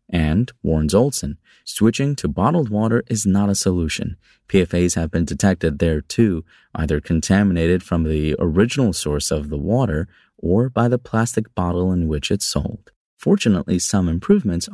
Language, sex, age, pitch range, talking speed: English, male, 30-49, 80-110 Hz, 155 wpm